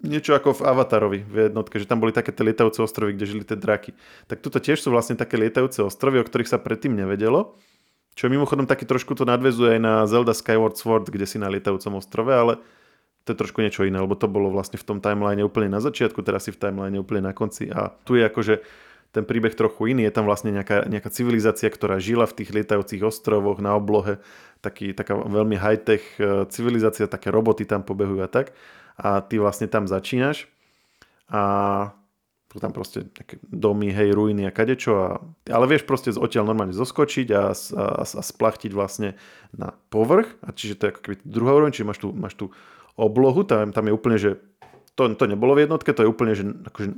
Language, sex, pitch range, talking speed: Slovak, male, 100-120 Hz, 205 wpm